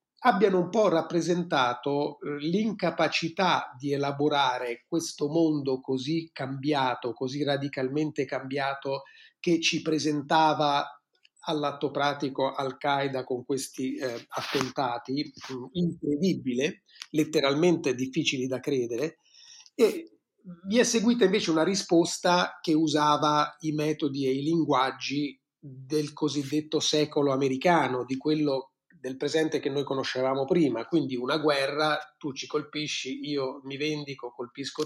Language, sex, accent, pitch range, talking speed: Italian, male, native, 135-160 Hz, 110 wpm